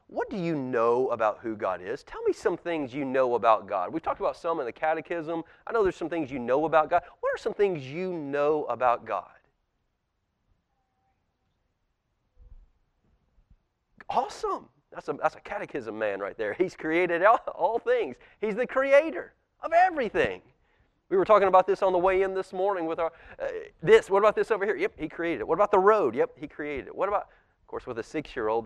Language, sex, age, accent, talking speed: English, male, 30-49, American, 205 wpm